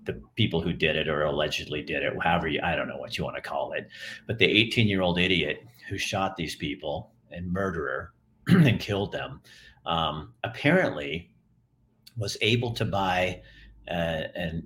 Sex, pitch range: male, 90-115 Hz